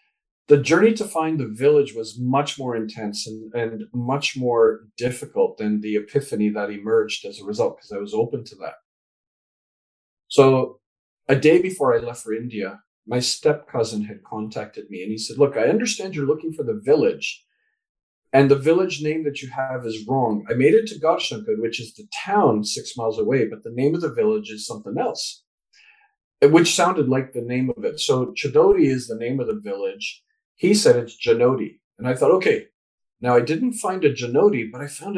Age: 40-59